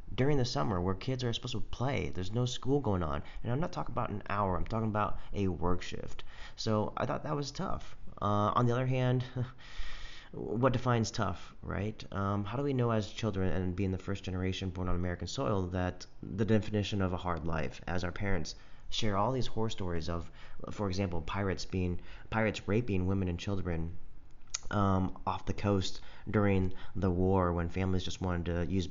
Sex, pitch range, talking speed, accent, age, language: male, 90-110 Hz, 200 wpm, American, 30-49, English